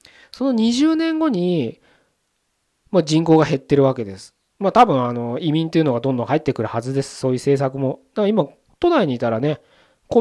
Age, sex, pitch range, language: 20-39, male, 115-155 Hz, Japanese